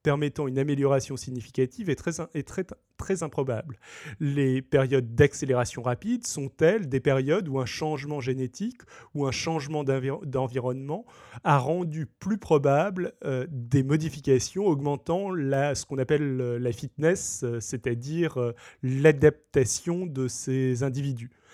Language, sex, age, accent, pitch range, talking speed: French, male, 30-49, French, 130-165 Hz, 125 wpm